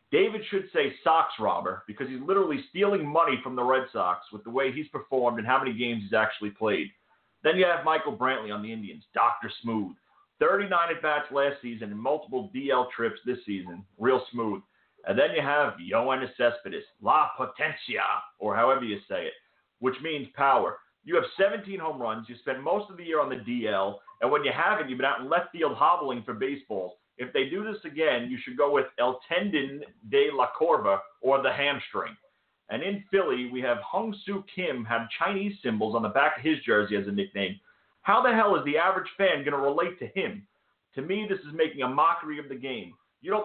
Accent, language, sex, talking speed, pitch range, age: American, English, male, 210 wpm, 120-195 Hz, 40-59